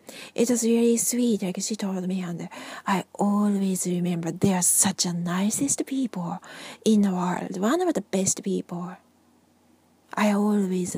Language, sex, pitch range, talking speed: English, female, 190-230 Hz, 160 wpm